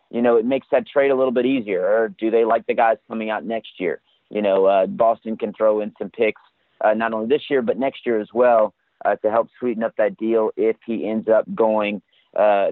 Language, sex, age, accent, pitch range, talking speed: English, male, 30-49, American, 105-125 Hz, 245 wpm